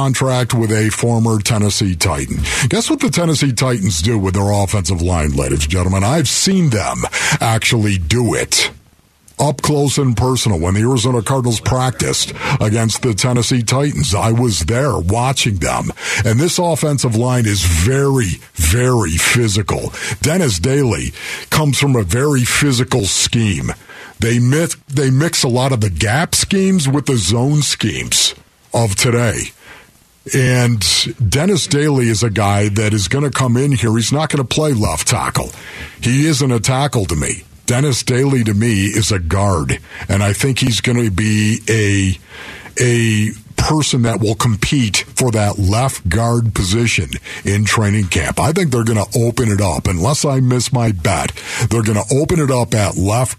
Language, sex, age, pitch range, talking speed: English, male, 50-69, 105-135 Hz, 165 wpm